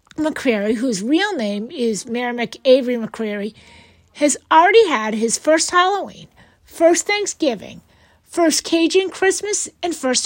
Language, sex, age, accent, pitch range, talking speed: English, female, 50-69, American, 245-355 Hz, 125 wpm